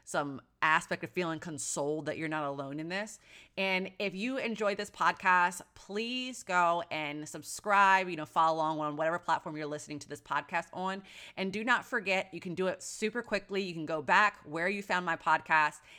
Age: 30-49